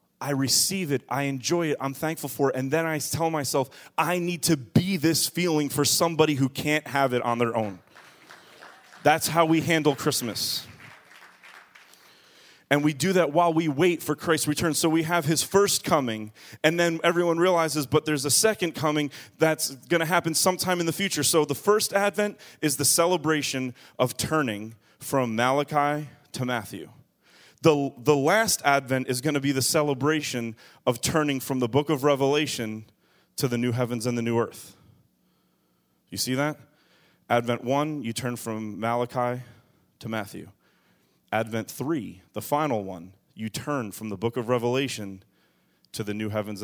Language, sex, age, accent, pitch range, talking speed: English, male, 30-49, American, 115-155 Hz, 170 wpm